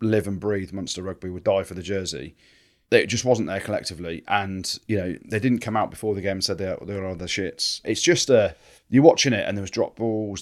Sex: male